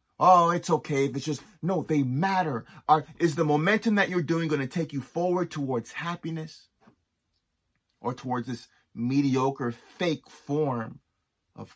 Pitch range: 110-135 Hz